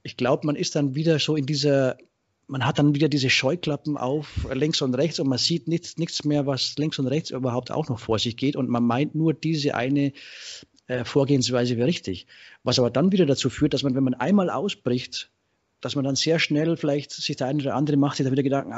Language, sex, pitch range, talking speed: German, male, 120-150 Hz, 235 wpm